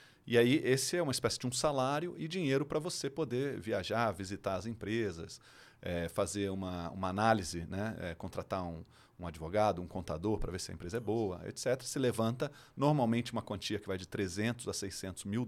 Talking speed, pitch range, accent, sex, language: 190 wpm, 105-135 Hz, Brazilian, male, Portuguese